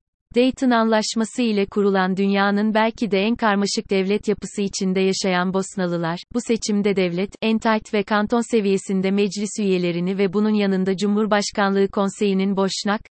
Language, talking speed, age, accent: Turkish, 135 wpm, 30-49, native